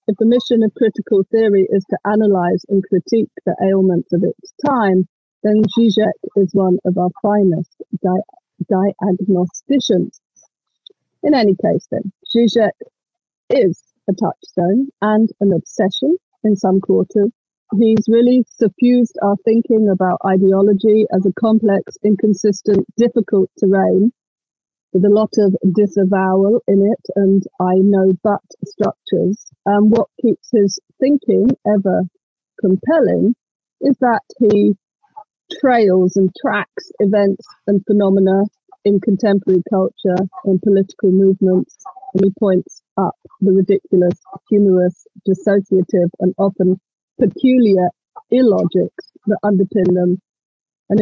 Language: English